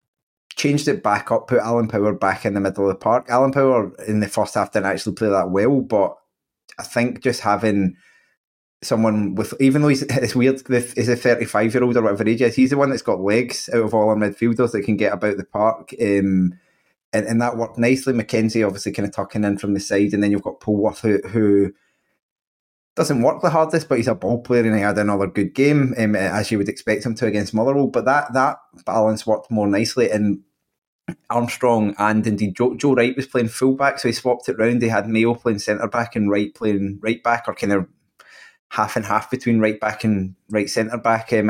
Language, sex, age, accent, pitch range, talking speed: English, male, 20-39, British, 105-120 Hz, 225 wpm